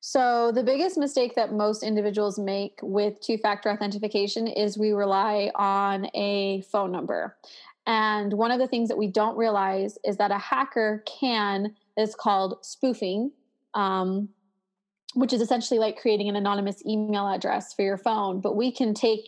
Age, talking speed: 20-39, 160 wpm